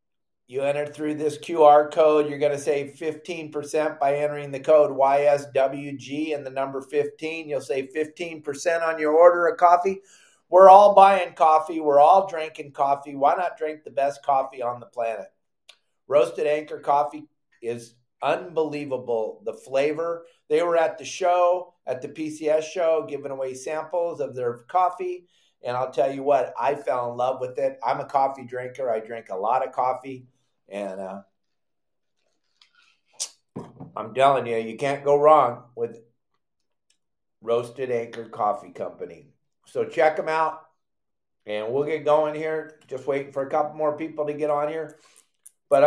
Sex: male